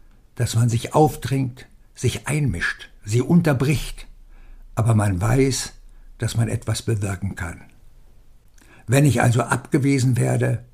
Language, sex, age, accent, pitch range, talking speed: German, male, 60-79, German, 115-130 Hz, 115 wpm